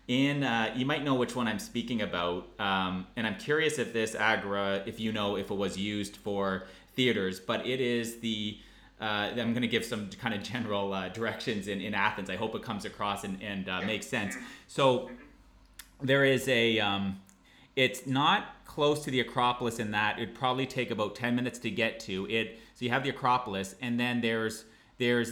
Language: English